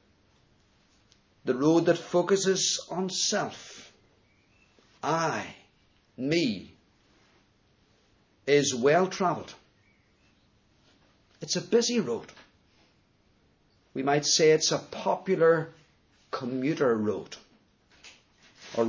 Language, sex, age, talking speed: English, male, 50-69, 75 wpm